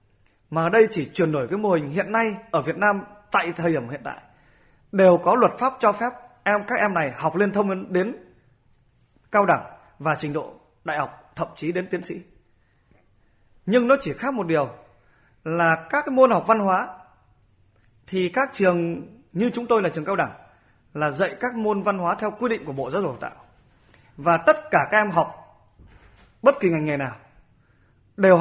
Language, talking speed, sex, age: Vietnamese, 200 wpm, male, 20-39